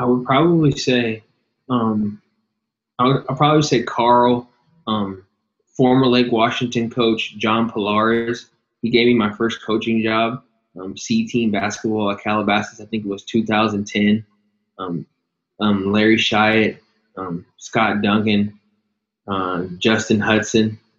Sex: male